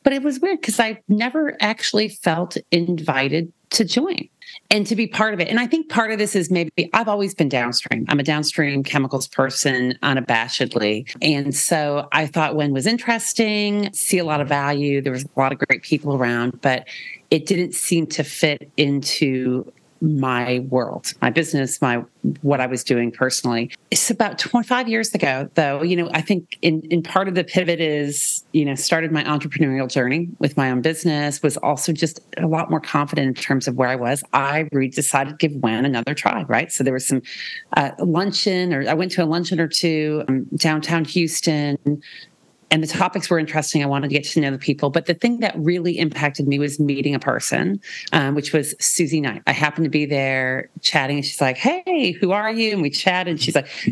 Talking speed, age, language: 205 wpm, 40-59, English